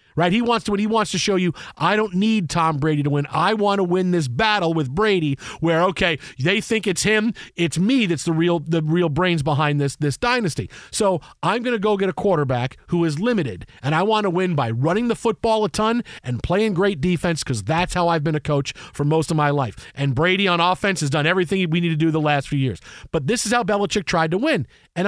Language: English